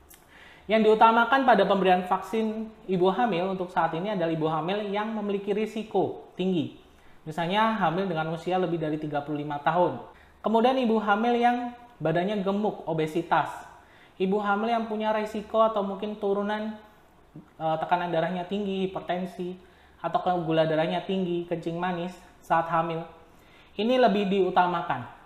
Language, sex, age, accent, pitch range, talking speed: Indonesian, male, 20-39, native, 160-210 Hz, 130 wpm